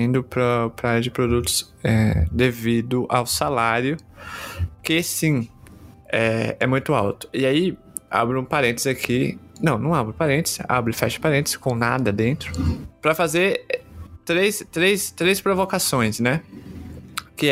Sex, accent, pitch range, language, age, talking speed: male, Brazilian, 110-145 Hz, Portuguese, 20-39, 140 wpm